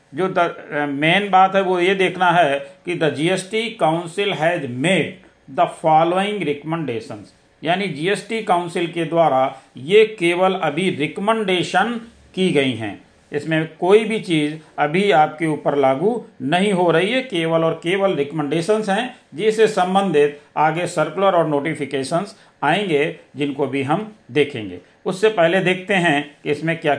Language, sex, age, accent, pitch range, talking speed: Hindi, male, 50-69, native, 145-195 Hz, 140 wpm